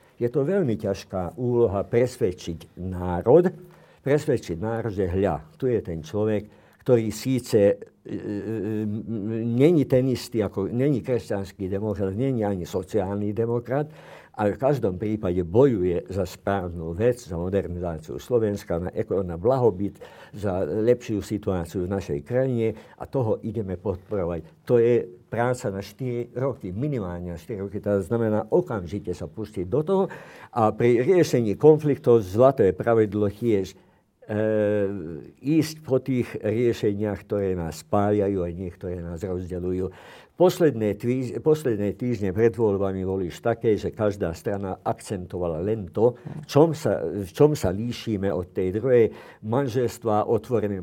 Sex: male